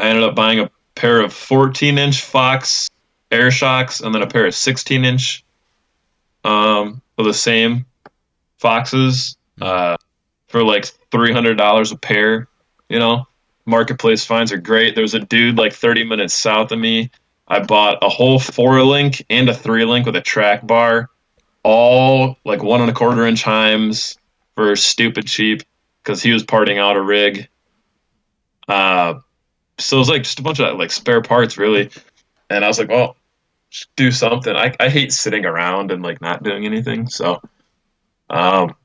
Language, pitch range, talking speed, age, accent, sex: English, 105-125 Hz, 170 wpm, 20-39, American, male